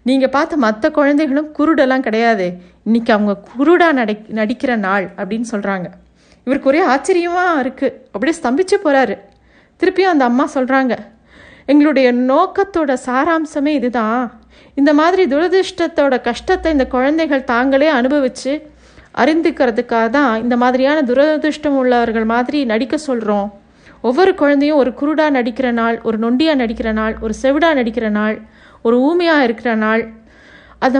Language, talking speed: Tamil, 125 wpm